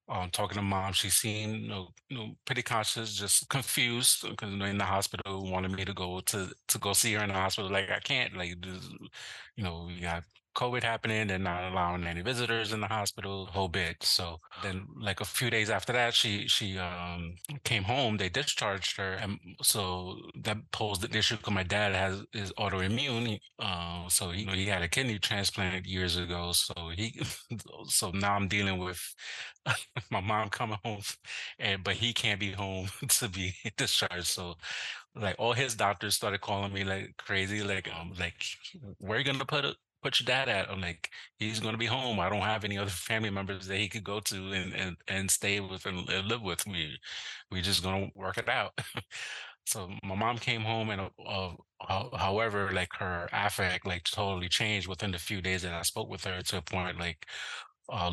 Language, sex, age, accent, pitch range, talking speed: English, male, 20-39, American, 95-110 Hz, 205 wpm